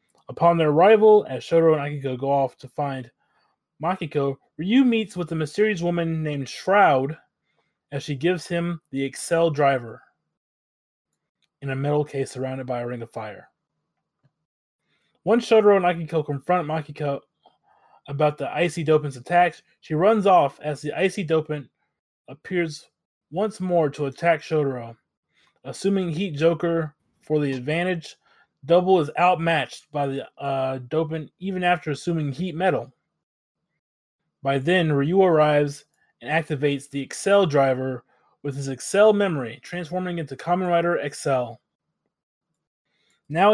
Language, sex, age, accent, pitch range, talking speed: English, male, 20-39, American, 140-175 Hz, 135 wpm